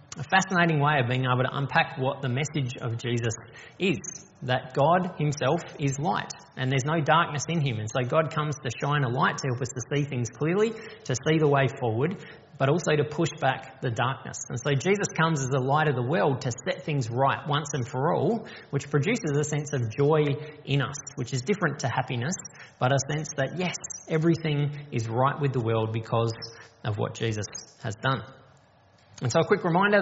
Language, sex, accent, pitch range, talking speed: English, male, Australian, 125-160 Hz, 210 wpm